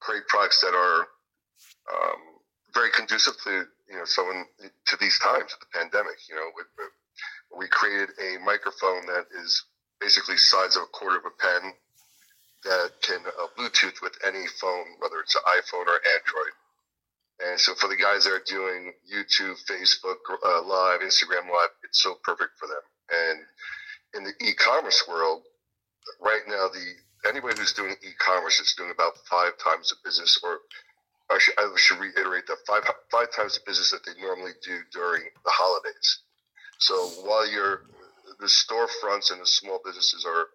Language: English